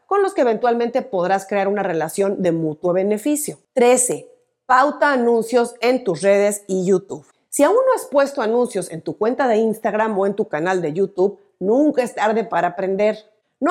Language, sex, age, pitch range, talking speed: Spanish, female, 40-59, 185-235 Hz, 185 wpm